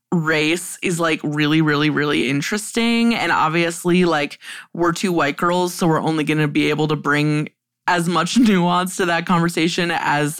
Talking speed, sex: 175 wpm, female